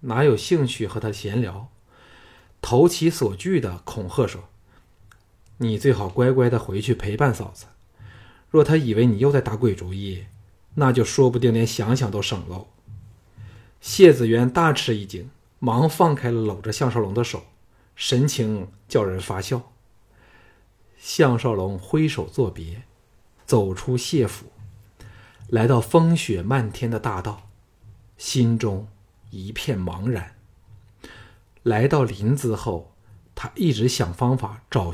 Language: Chinese